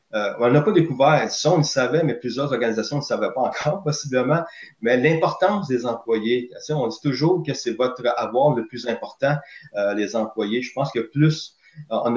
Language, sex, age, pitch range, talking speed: French, male, 30-49, 115-150 Hz, 190 wpm